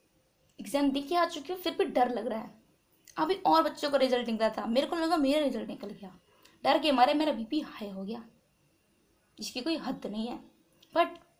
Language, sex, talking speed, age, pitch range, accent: Hindi, female, 210 wpm, 20-39, 215-285 Hz, native